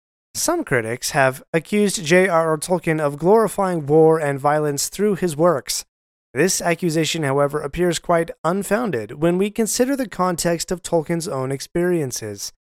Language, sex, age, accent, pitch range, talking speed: English, male, 30-49, American, 135-185 Hz, 135 wpm